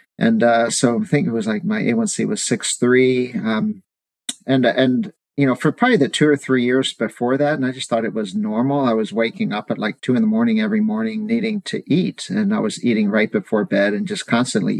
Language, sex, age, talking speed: English, male, 40-59, 235 wpm